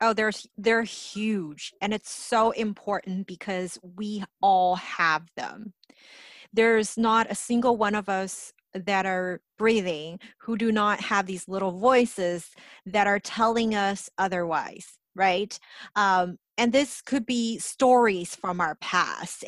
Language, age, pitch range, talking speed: English, 30-49, 180-225 Hz, 140 wpm